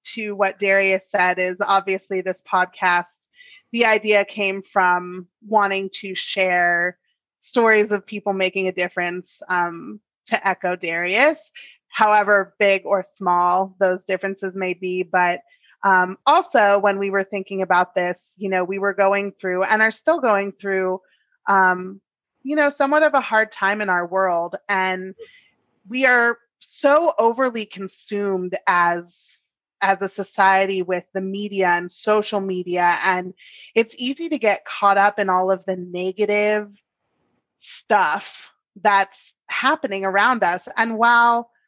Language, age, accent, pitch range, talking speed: English, 30-49, American, 185-220 Hz, 145 wpm